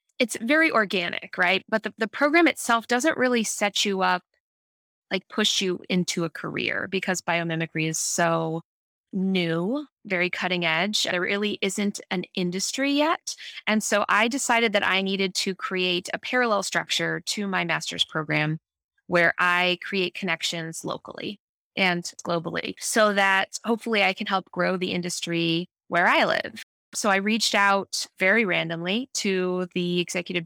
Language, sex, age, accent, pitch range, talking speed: English, female, 20-39, American, 175-215 Hz, 155 wpm